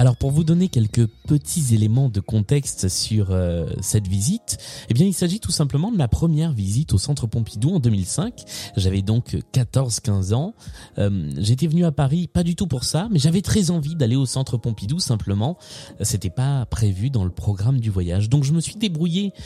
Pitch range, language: 100-145 Hz, French